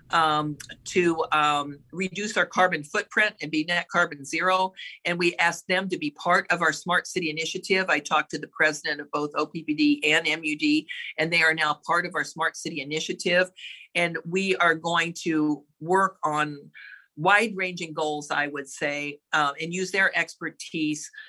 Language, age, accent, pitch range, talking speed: English, 50-69, American, 150-185 Hz, 170 wpm